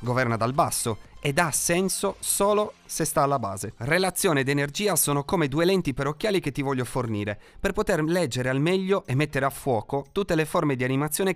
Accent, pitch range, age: native, 125-170 Hz, 30-49